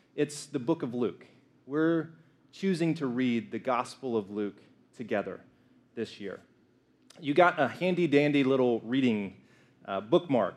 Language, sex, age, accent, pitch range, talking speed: English, male, 30-49, American, 125-165 Hz, 135 wpm